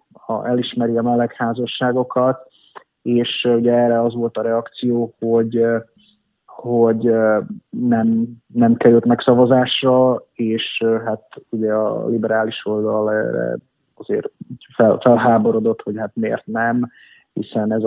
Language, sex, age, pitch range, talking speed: Hungarian, male, 30-49, 110-120 Hz, 110 wpm